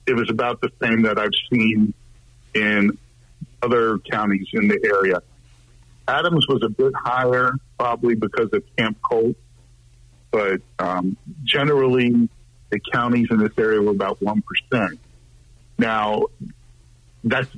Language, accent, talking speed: English, American, 125 wpm